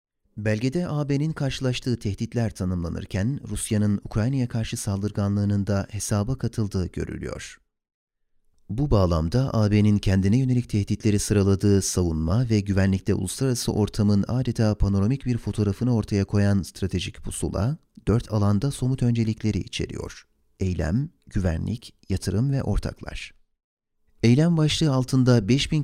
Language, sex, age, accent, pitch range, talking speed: Turkish, male, 40-59, native, 100-120 Hz, 110 wpm